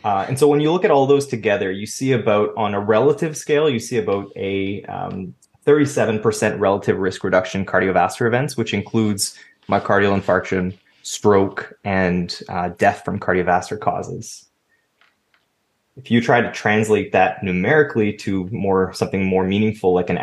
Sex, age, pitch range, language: male, 20-39, 100-135 Hz, English